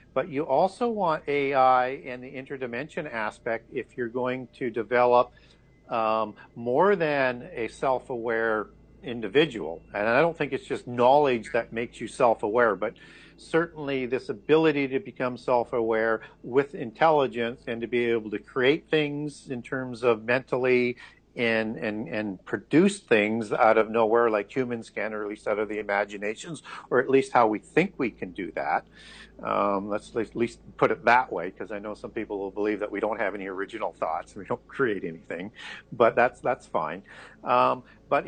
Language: English